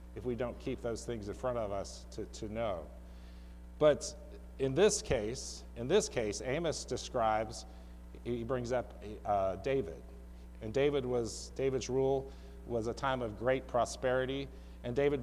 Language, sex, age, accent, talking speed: English, male, 40-59, American, 160 wpm